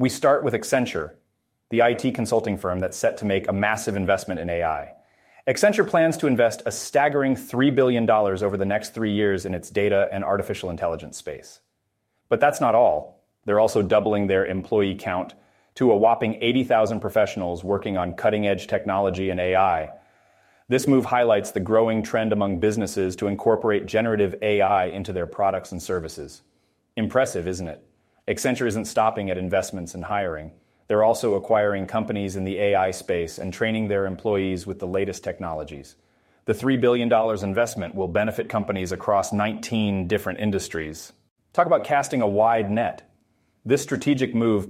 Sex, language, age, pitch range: male, English, 30-49, 95-115 Hz